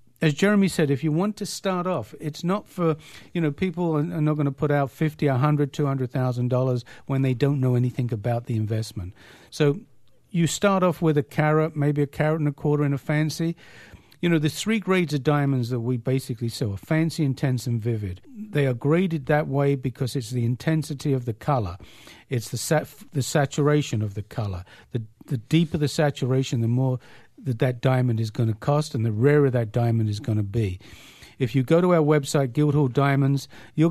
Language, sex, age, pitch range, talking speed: English, male, 50-69, 125-155 Hz, 205 wpm